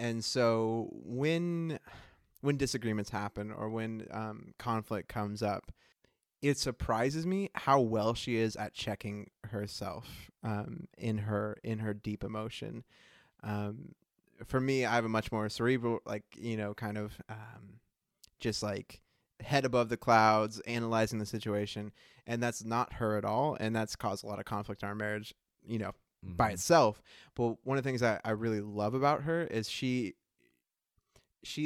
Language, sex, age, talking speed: English, male, 20-39, 165 wpm